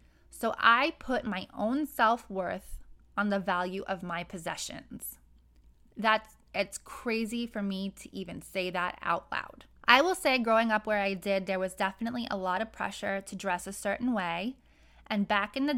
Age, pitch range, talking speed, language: 20-39, 195-235 Hz, 175 wpm, English